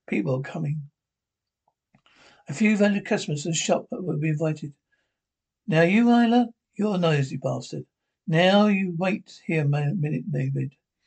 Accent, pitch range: British, 150-185 Hz